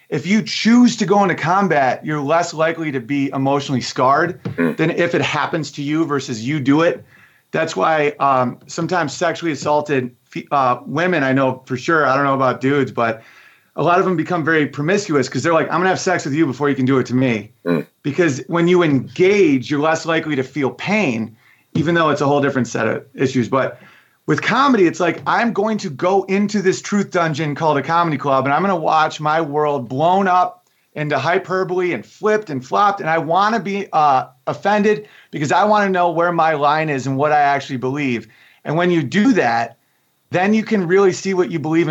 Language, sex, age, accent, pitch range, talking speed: English, male, 30-49, American, 140-185 Hz, 215 wpm